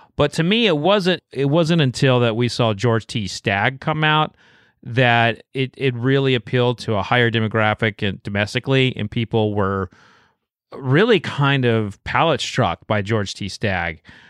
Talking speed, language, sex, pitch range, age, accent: 165 wpm, English, male, 100-125 Hz, 30-49, American